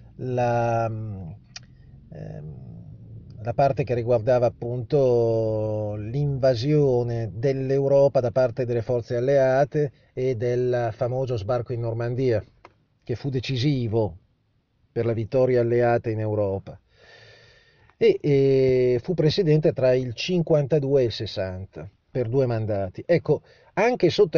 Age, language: 30-49, Italian